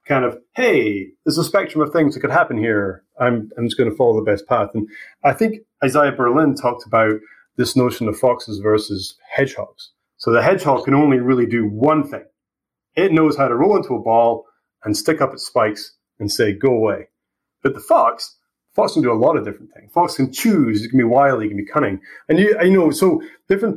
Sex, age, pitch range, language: male, 30-49, 110-155 Hz, English